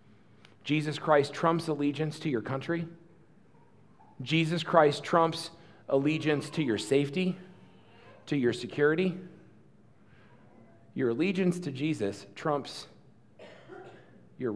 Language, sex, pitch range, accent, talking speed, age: English, male, 145-175 Hz, American, 95 wpm, 40-59